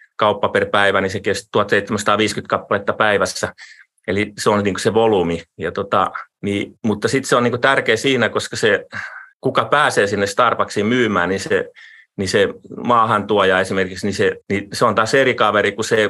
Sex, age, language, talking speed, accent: male, 30-49, Finnish, 185 wpm, native